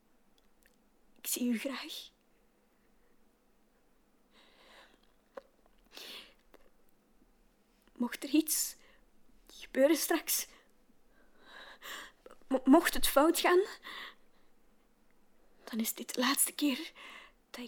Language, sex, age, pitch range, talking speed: Dutch, female, 20-39, 240-285 Hz, 70 wpm